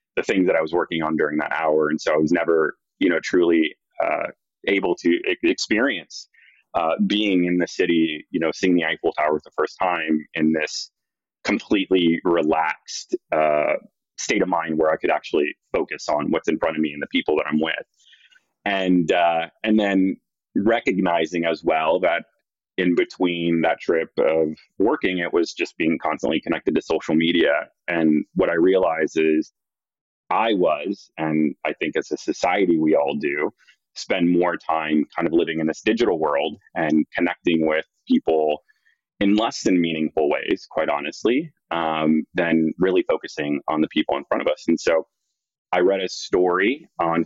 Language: English